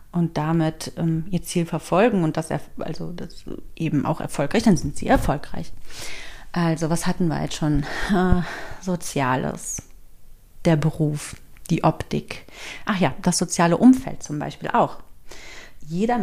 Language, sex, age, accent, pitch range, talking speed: German, female, 40-59, German, 170-200 Hz, 135 wpm